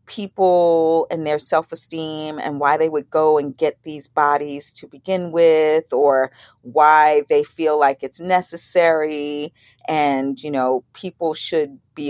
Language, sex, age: English, female, 40-59